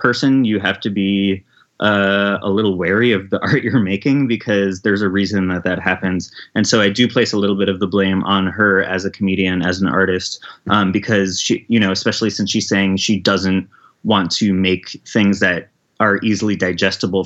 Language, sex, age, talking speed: English, male, 20-39, 205 wpm